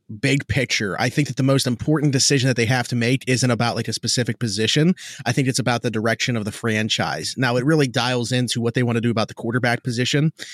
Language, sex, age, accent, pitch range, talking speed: English, male, 30-49, American, 115-135 Hz, 245 wpm